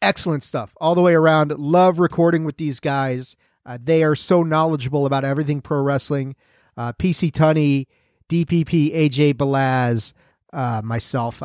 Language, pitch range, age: English, 130-175 Hz, 40-59